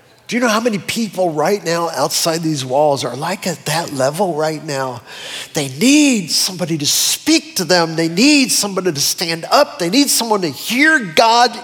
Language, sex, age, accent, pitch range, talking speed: English, male, 40-59, American, 180-225 Hz, 190 wpm